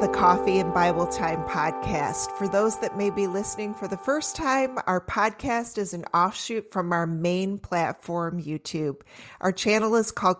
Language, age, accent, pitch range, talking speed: English, 30-49, American, 160-205 Hz, 175 wpm